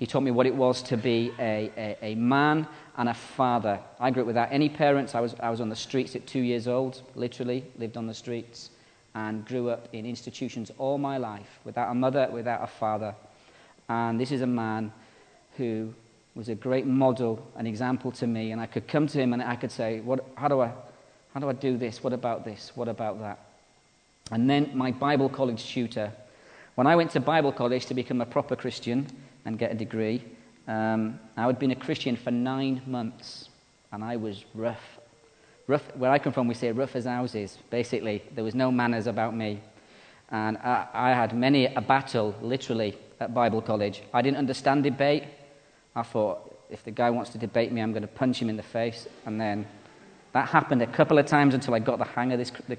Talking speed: 215 wpm